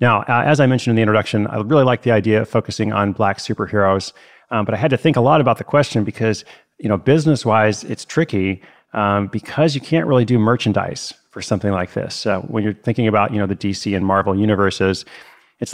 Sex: male